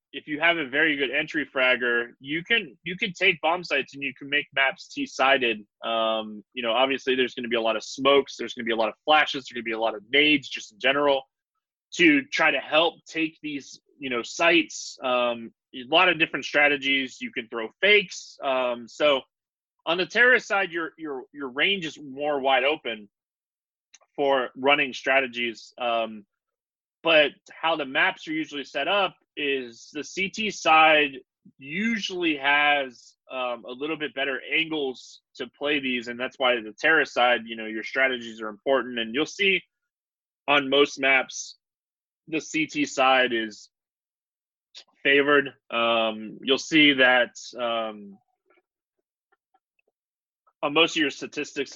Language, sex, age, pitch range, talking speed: English, male, 20-39, 120-160 Hz, 170 wpm